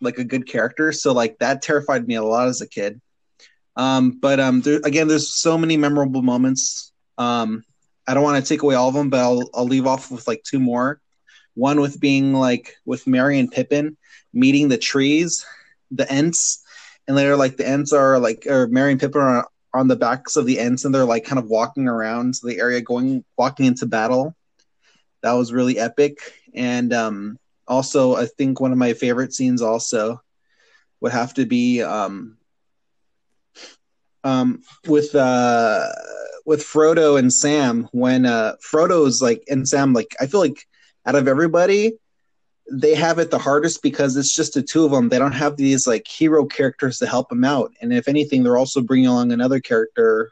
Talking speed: 190 wpm